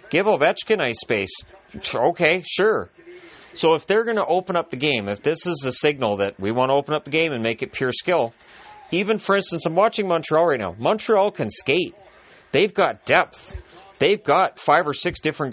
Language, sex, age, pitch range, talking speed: English, male, 30-49, 115-160 Hz, 205 wpm